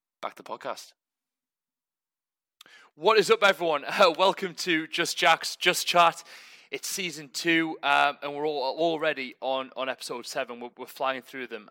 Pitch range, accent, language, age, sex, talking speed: 130-160 Hz, British, English, 20-39, male, 165 wpm